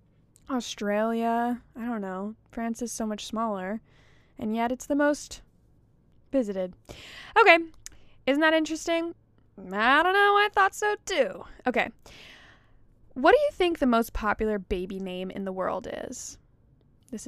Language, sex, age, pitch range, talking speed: English, female, 20-39, 195-265 Hz, 140 wpm